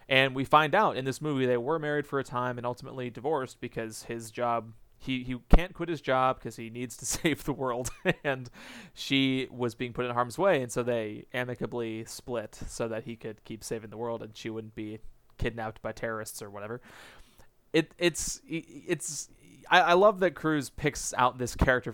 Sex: male